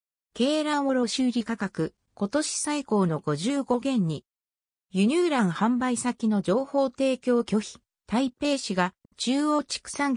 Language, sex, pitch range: Japanese, female, 175-260 Hz